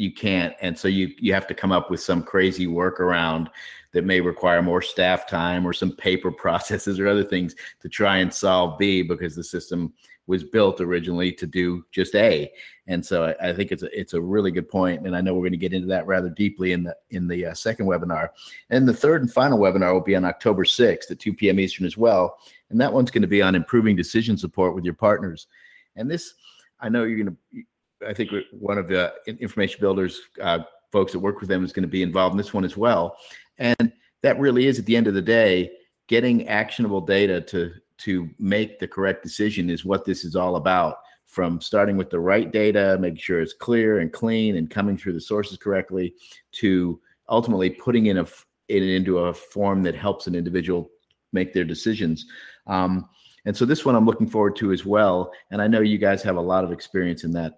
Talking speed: 225 wpm